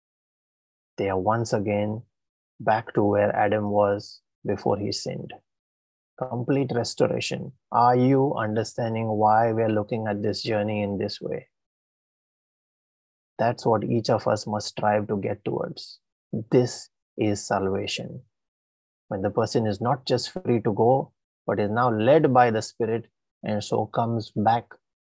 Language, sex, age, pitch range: English, male, 30-49, 105-125 Hz